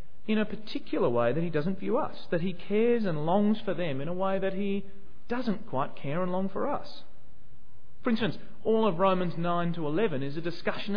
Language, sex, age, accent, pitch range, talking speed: English, male, 30-49, Australian, 130-215 Hz, 215 wpm